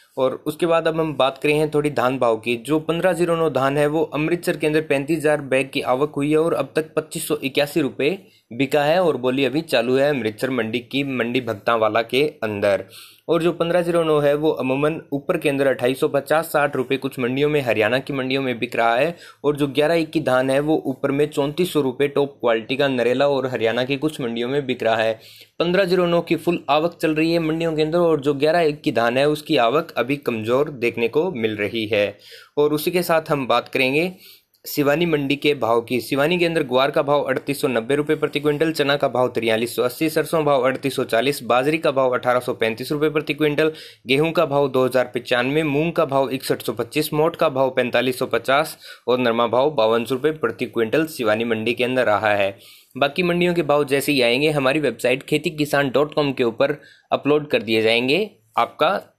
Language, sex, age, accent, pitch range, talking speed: Hindi, male, 20-39, native, 125-155 Hz, 210 wpm